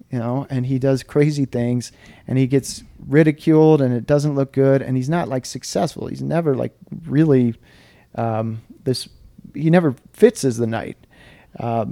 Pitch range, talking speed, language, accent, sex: 120-145 Hz, 165 wpm, English, American, male